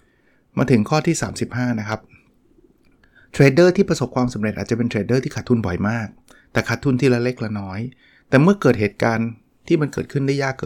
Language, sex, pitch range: Thai, male, 115-140 Hz